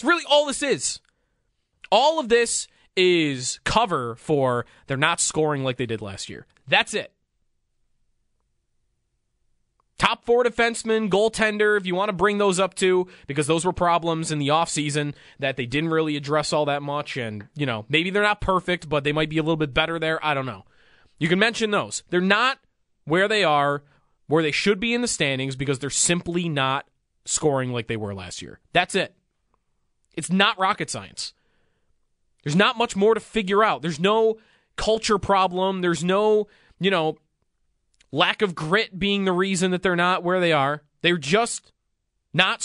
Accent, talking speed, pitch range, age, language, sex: American, 180 wpm, 145-205 Hz, 20-39, English, male